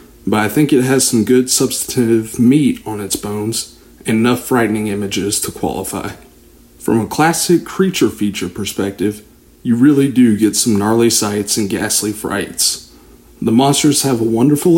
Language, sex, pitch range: English, male, 105-130 Hz